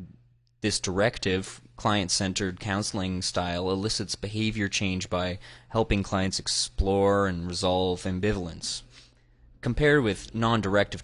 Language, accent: English, American